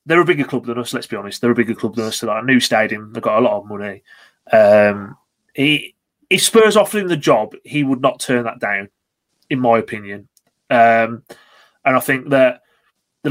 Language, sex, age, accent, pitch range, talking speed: English, male, 30-49, British, 115-140 Hz, 220 wpm